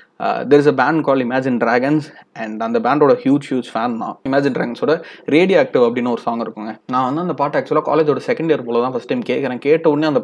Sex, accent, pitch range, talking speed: male, native, 130-155 Hz, 235 wpm